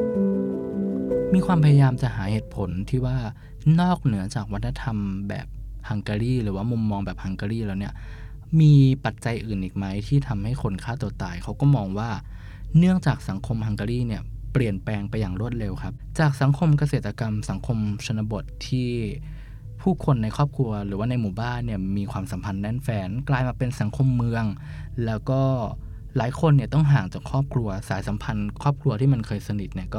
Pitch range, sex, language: 100-135 Hz, male, Thai